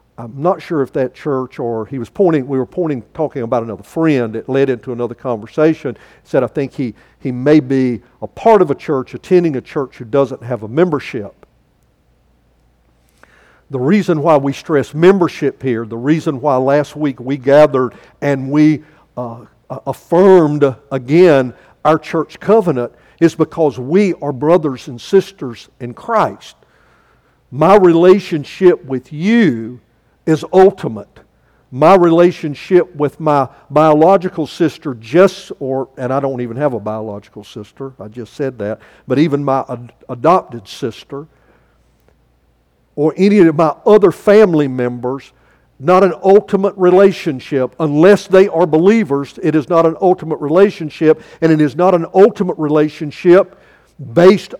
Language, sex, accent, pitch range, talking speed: English, male, American, 130-175 Hz, 145 wpm